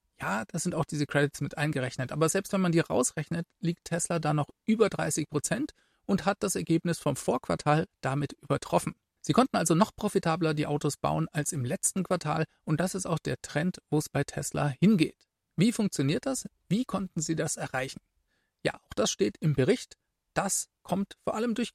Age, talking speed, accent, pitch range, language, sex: 40-59, 195 wpm, German, 145-190 Hz, German, male